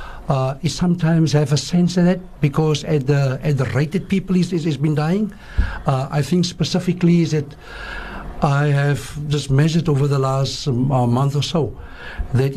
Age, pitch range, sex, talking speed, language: 60-79, 140-175 Hz, male, 195 wpm, English